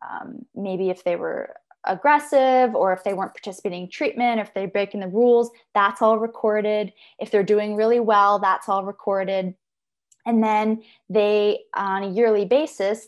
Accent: American